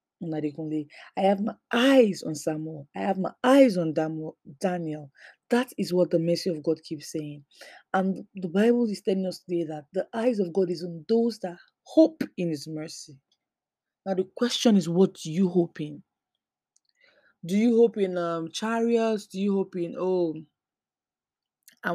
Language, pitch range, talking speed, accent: English, 165-210 Hz, 170 wpm, Nigerian